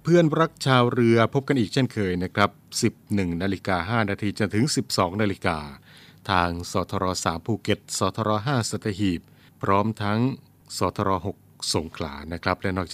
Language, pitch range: Thai, 90-115 Hz